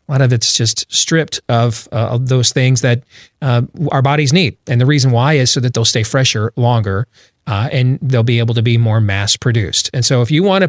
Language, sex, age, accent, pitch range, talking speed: English, male, 40-59, American, 120-155 Hz, 240 wpm